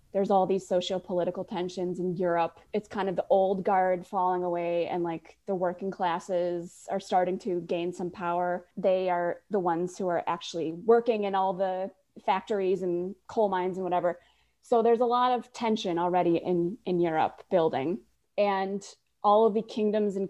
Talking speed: 175 wpm